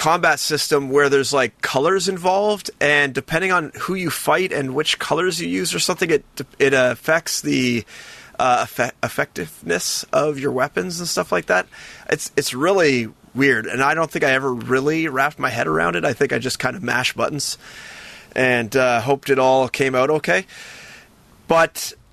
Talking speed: 180 wpm